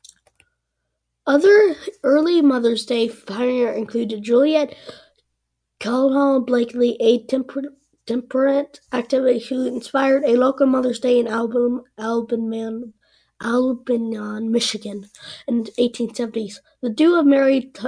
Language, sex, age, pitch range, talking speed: English, female, 20-39, 235-275 Hz, 125 wpm